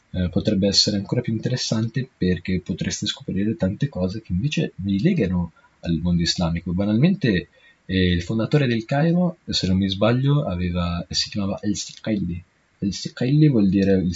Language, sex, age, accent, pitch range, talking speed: Italian, male, 20-39, native, 90-115 Hz, 150 wpm